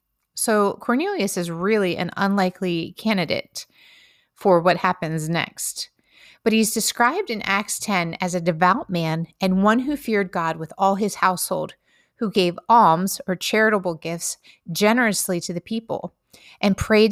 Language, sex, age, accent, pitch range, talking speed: English, female, 30-49, American, 175-225 Hz, 145 wpm